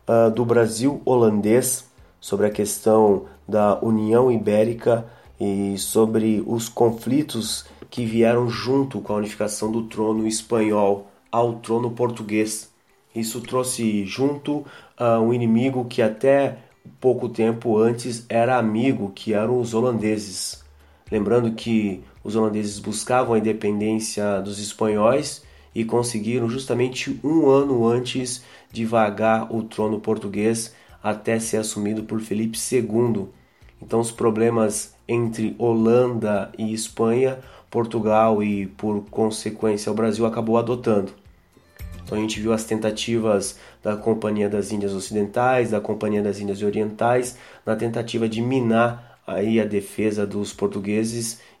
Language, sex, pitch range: Portuguese, male, 105-120 Hz